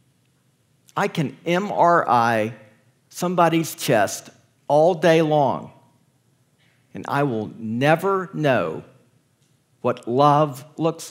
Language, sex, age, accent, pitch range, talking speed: English, male, 50-69, American, 135-185 Hz, 85 wpm